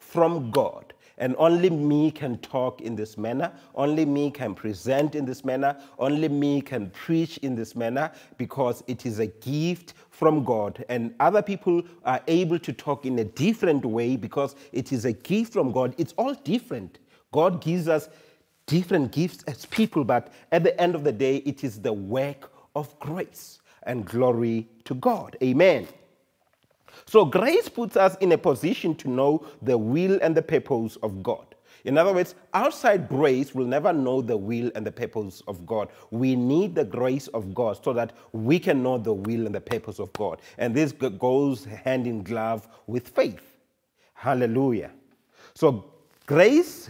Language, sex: English, male